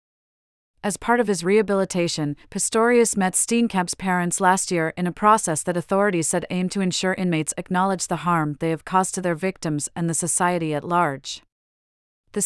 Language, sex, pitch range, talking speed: English, female, 165-195 Hz, 175 wpm